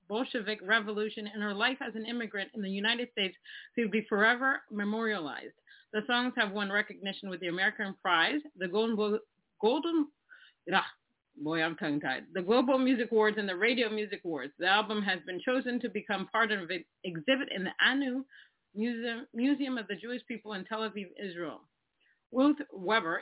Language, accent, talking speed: English, American, 165 wpm